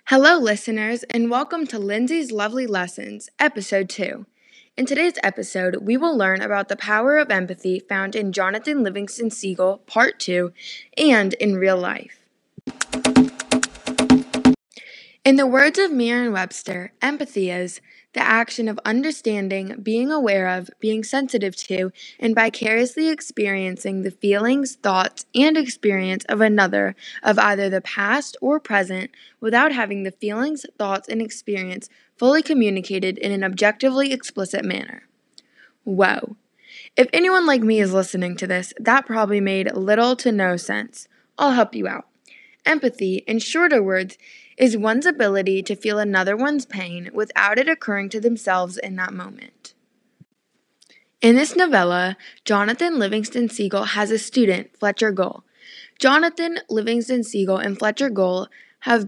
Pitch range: 195-255 Hz